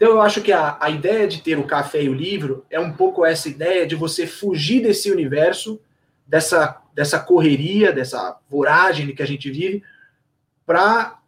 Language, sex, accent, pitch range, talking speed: Portuguese, male, Brazilian, 145-200 Hz, 180 wpm